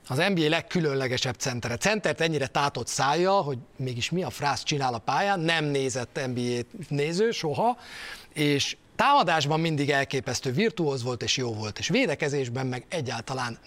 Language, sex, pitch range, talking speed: Hungarian, male, 125-175 Hz, 150 wpm